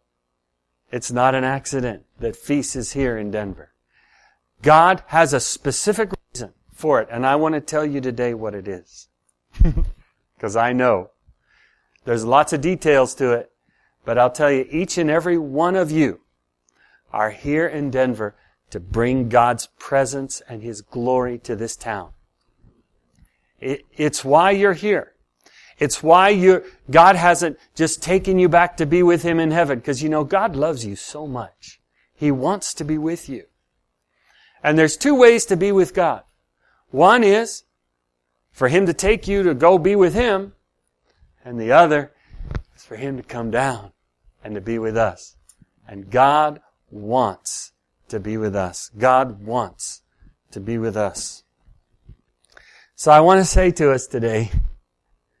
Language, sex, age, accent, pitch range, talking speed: English, male, 40-59, American, 105-160 Hz, 160 wpm